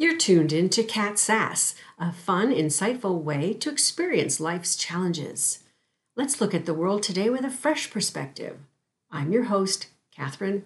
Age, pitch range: 50-69, 160-220 Hz